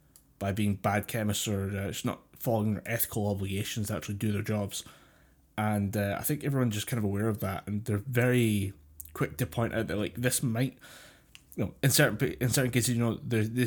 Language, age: English, 20-39